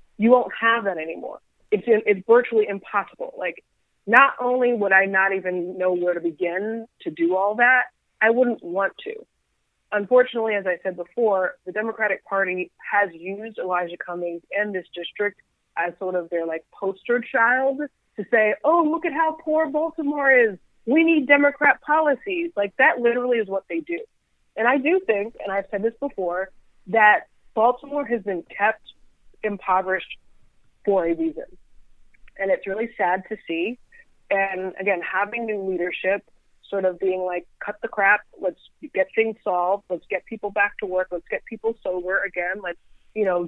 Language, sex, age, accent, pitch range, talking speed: English, female, 30-49, American, 185-240 Hz, 170 wpm